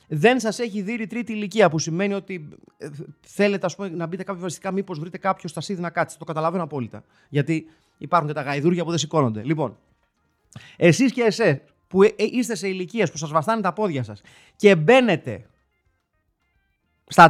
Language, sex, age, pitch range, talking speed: Greek, male, 30-49, 150-225 Hz, 175 wpm